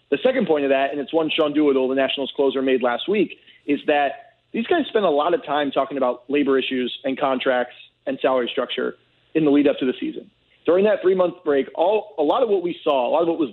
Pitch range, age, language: 135-165 Hz, 30-49, English